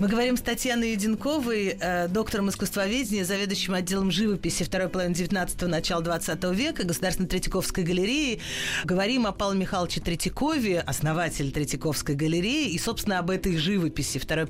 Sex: female